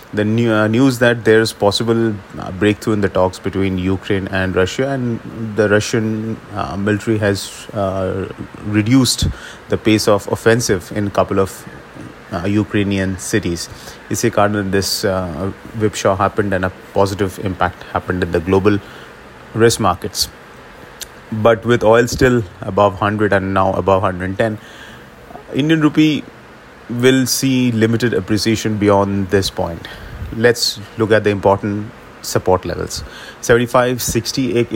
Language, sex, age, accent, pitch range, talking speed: English, male, 30-49, Indian, 95-115 Hz, 135 wpm